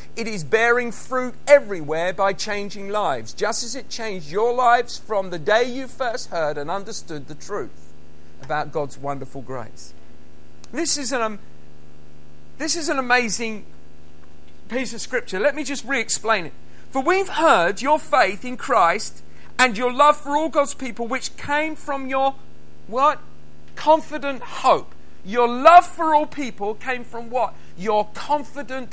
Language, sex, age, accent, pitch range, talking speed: English, male, 50-69, British, 205-280 Hz, 155 wpm